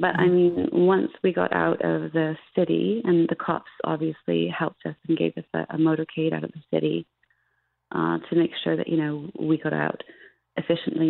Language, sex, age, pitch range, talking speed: English, female, 30-49, 145-165 Hz, 200 wpm